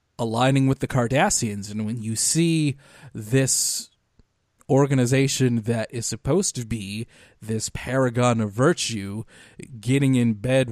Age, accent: 30-49, American